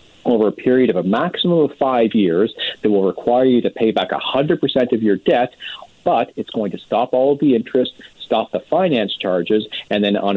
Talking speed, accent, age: 210 wpm, American, 40-59